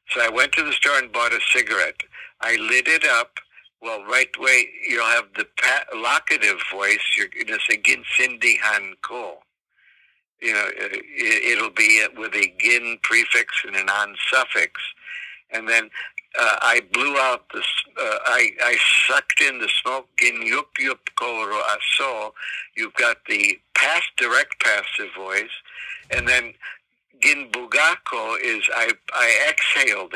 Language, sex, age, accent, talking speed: English, male, 60-79, American, 155 wpm